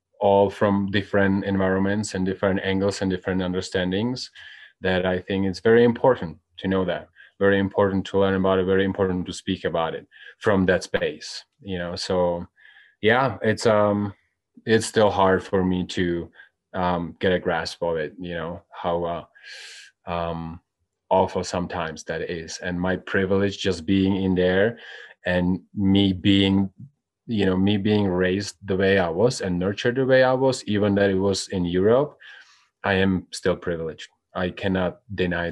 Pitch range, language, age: 90-100 Hz, English, 30-49